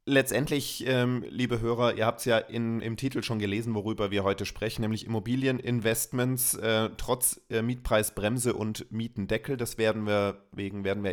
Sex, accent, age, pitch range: male, German, 30-49, 105-120 Hz